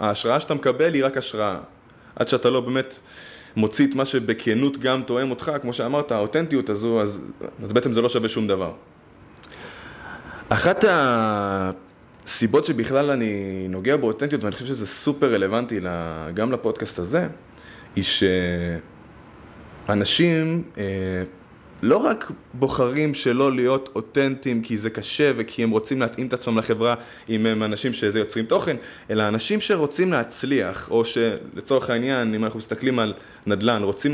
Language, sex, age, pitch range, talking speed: Hebrew, male, 20-39, 110-140 Hz, 140 wpm